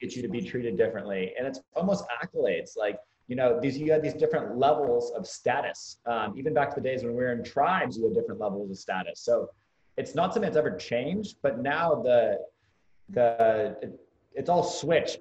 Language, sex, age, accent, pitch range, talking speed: English, male, 30-49, American, 125-200 Hz, 210 wpm